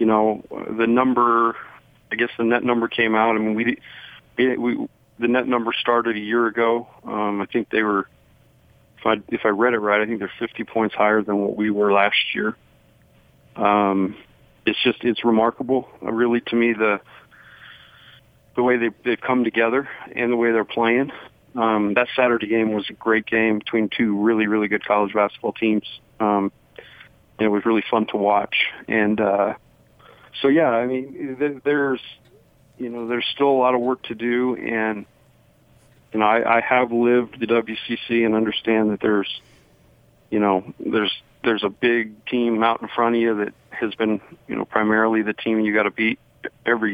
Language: English